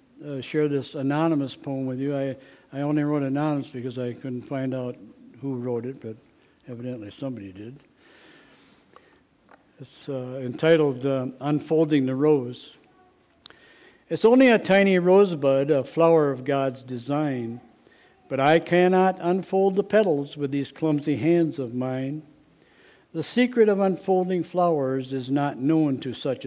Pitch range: 135-170 Hz